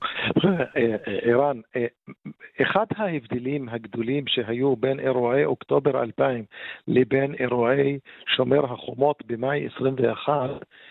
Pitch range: 125-155 Hz